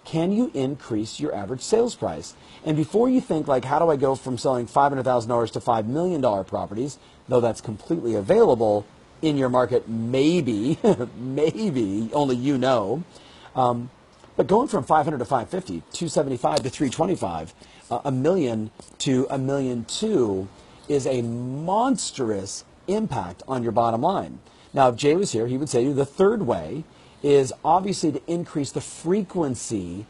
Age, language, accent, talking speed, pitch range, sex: 40-59, English, American, 160 wpm, 120-150 Hz, male